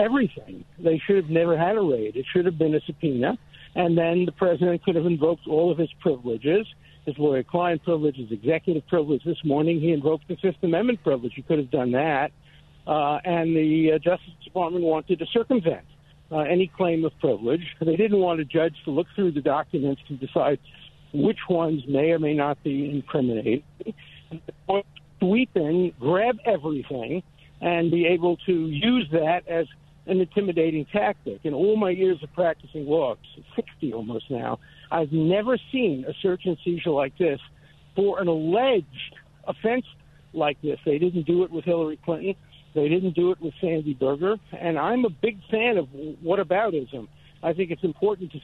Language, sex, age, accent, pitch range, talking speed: English, male, 60-79, American, 150-180 Hz, 180 wpm